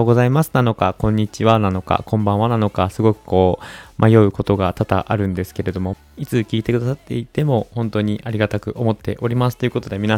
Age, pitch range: 20-39, 100-125 Hz